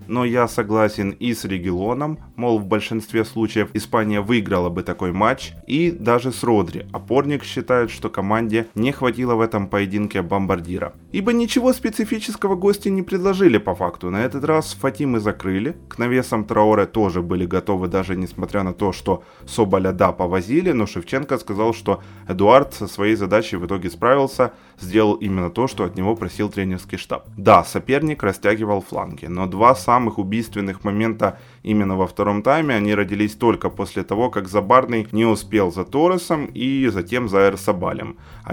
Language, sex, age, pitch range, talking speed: Ukrainian, male, 20-39, 95-120 Hz, 165 wpm